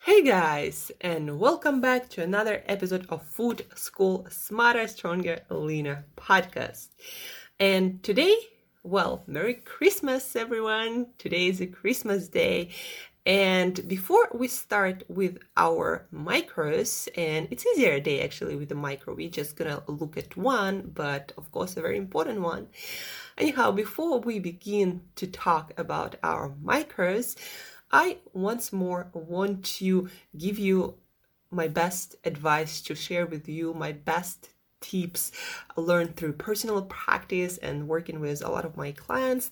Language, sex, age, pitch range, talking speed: English, female, 20-39, 165-235 Hz, 140 wpm